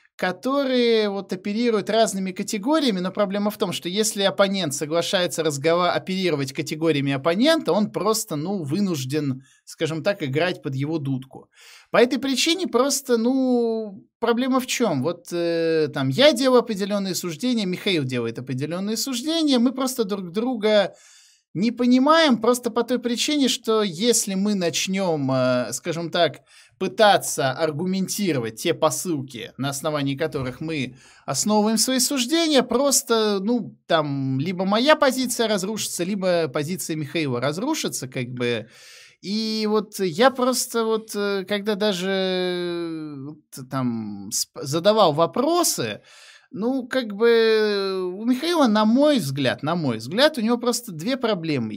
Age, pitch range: 20-39, 160-235 Hz